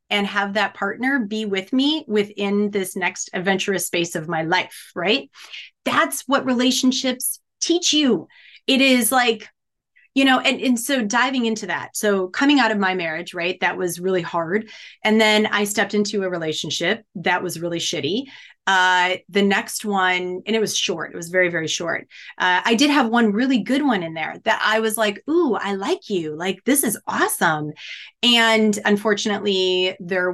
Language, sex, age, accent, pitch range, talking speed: English, female, 30-49, American, 180-230 Hz, 180 wpm